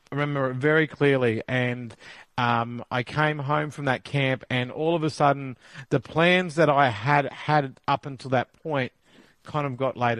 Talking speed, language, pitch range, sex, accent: 190 wpm, English, 135-170 Hz, male, Australian